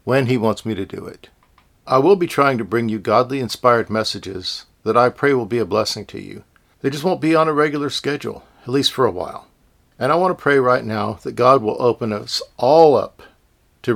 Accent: American